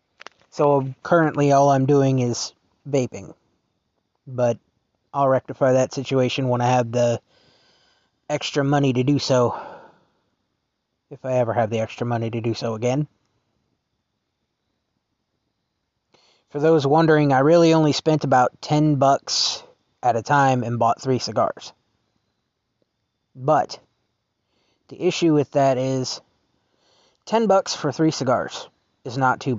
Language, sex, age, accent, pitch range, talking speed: English, male, 20-39, American, 120-145 Hz, 130 wpm